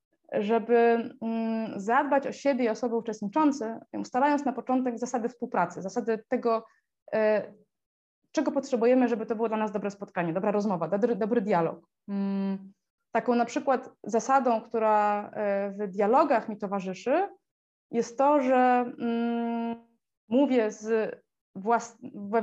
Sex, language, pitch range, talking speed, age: female, Polish, 205-265 Hz, 110 wpm, 20-39